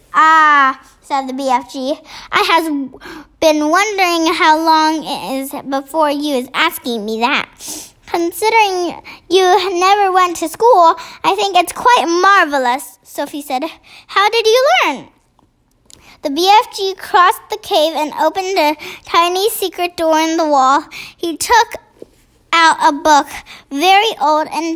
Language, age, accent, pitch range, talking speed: English, 10-29, American, 295-360 Hz, 140 wpm